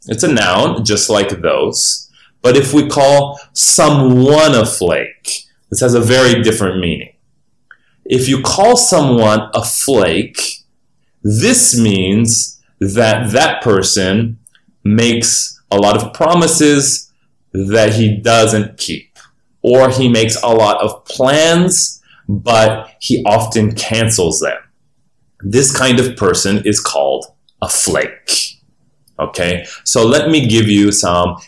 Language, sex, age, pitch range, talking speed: English, male, 30-49, 105-135 Hz, 125 wpm